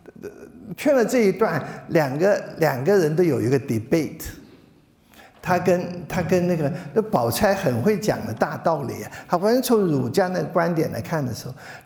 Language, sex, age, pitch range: Chinese, male, 50-69, 145-205 Hz